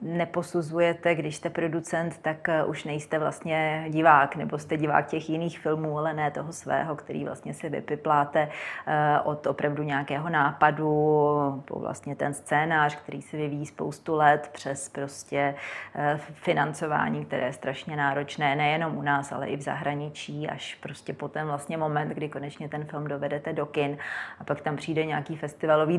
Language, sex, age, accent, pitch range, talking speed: Czech, female, 30-49, native, 150-170 Hz, 160 wpm